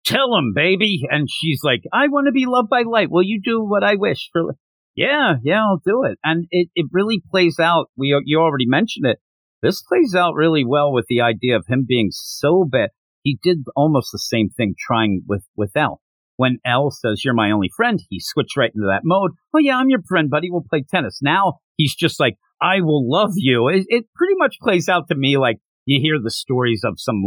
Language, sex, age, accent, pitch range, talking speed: English, male, 50-69, American, 120-190 Hz, 225 wpm